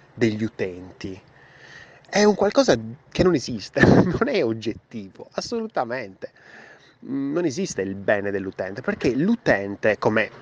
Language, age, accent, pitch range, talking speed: Italian, 20-39, native, 110-160 Hz, 115 wpm